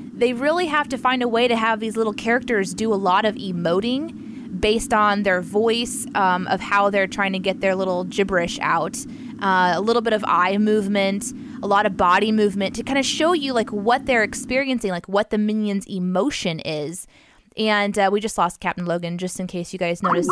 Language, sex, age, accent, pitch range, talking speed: English, female, 20-39, American, 190-245 Hz, 215 wpm